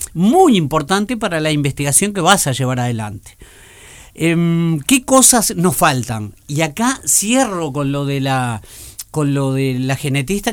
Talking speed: 150 wpm